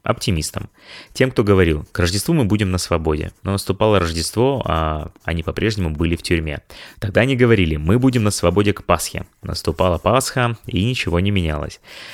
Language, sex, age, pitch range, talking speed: Russian, male, 20-39, 80-105 Hz, 170 wpm